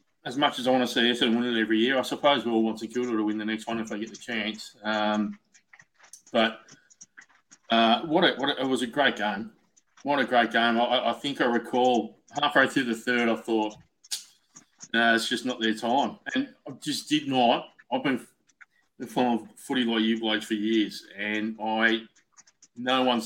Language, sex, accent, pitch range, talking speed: English, male, Australian, 110-125 Hz, 215 wpm